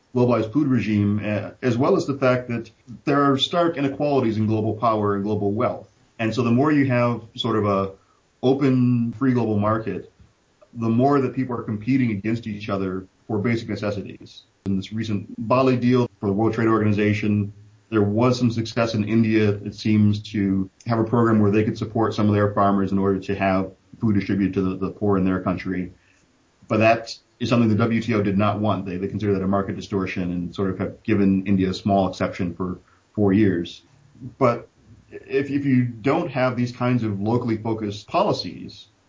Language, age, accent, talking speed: English, 30-49, American, 195 wpm